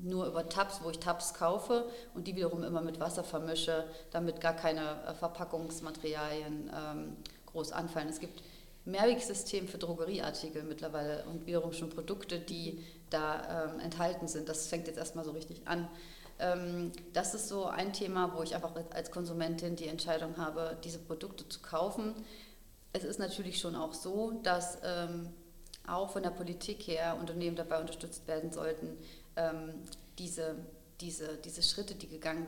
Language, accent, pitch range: German, German, 160-175 Hz